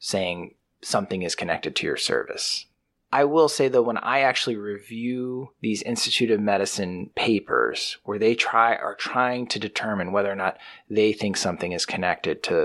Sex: male